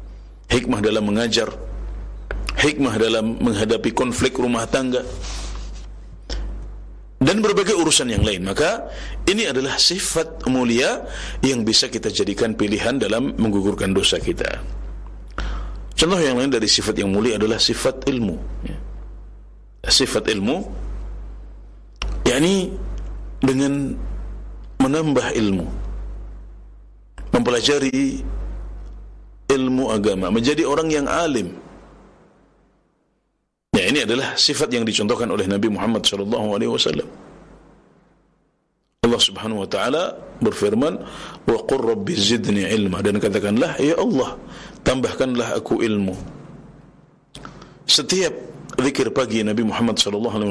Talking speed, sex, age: 100 wpm, male, 50-69